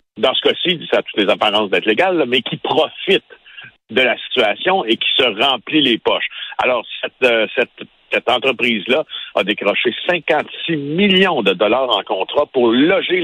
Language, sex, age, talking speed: French, male, 60-79, 170 wpm